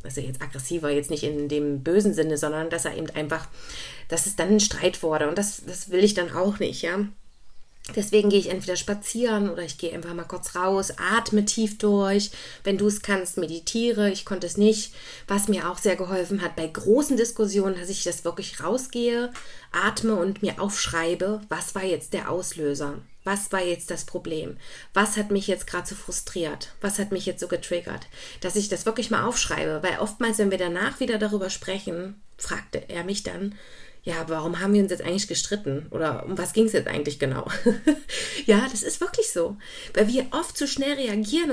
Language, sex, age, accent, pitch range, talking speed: German, female, 20-39, German, 175-220 Hz, 200 wpm